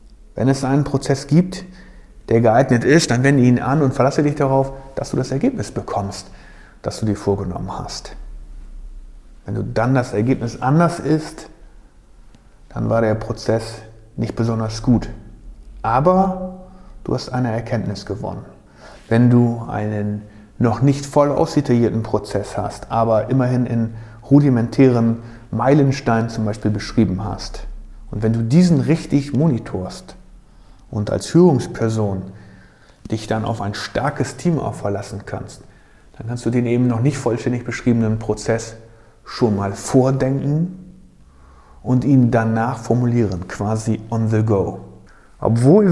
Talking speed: 135 wpm